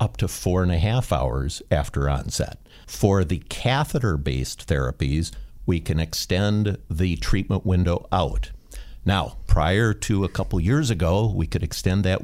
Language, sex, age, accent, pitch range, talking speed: English, male, 50-69, American, 80-110 Hz, 155 wpm